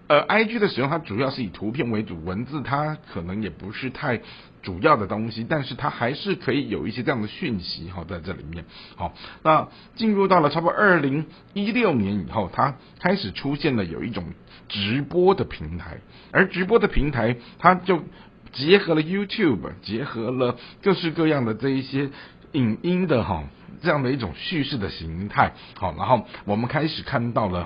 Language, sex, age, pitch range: Chinese, male, 50-69, 110-165 Hz